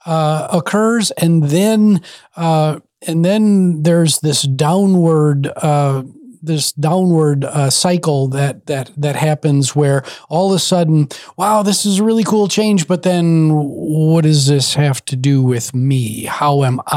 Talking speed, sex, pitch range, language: 150 wpm, male, 140-170 Hz, English